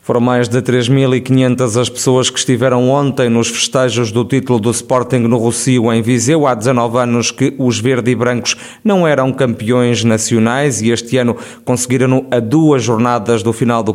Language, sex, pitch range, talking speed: Portuguese, male, 120-135 Hz, 175 wpm